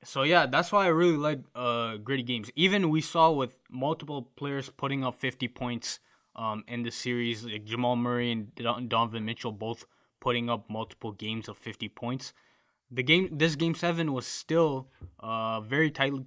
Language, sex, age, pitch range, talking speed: English, male, 20-39, 110-135 Hz, 175 wpm